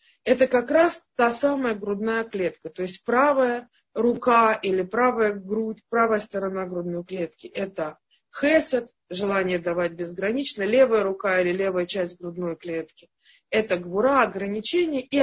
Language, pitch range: Russian, 190-260 Hz